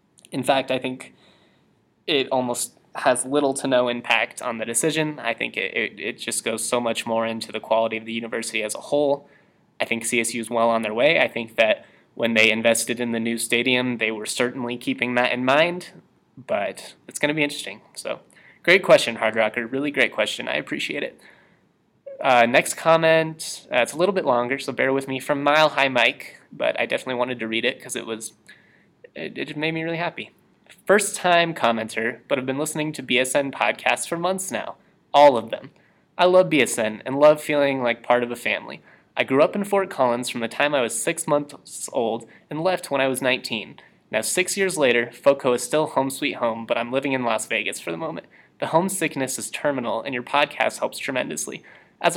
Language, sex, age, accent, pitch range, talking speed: English, male, 20-39, American, 115-155 Hz, 210 wpm